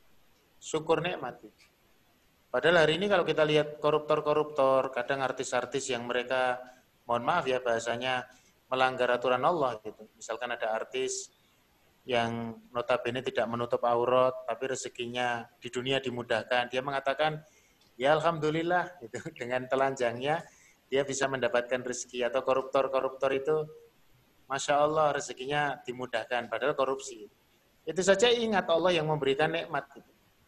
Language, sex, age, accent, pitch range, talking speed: Indonesian, male, 30-49, native, 120-140 Hz, 120 wpm